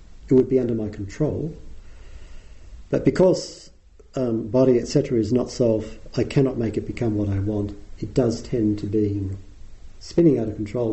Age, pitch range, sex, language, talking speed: 50-69, 85-120 Hz, male, English, 170 wpm